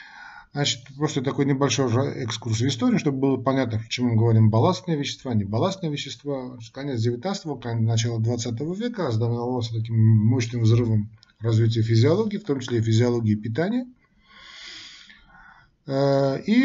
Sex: male